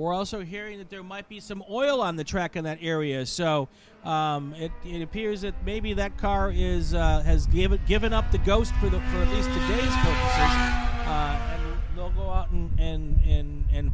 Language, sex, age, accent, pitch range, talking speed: English, male, 50-69, American, 150-200 Hz, 205 wpm